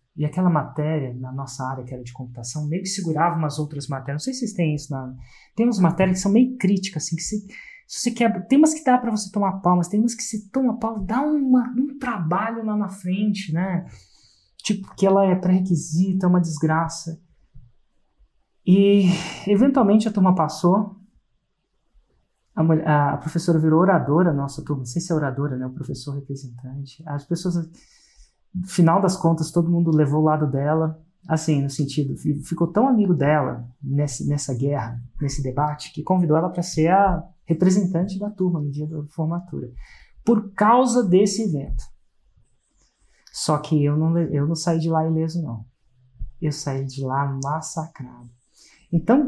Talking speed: 175 wpm